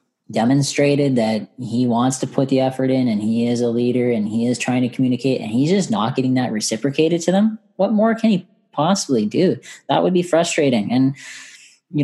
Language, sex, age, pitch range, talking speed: English, female, 10-29, 115-160 Hz, 205 wpm